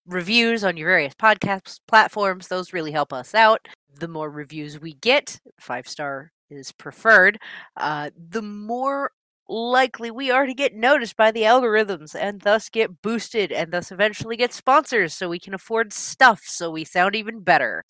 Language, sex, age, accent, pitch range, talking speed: English, female, 30-49, American, 150-210 Hz, 170 wpm